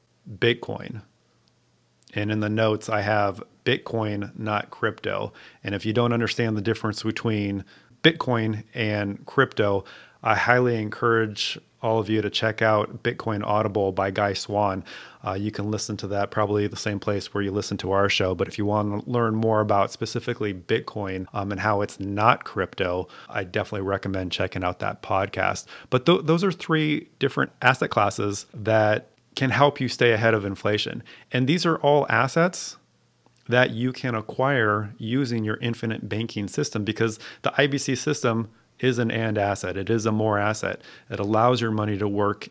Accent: American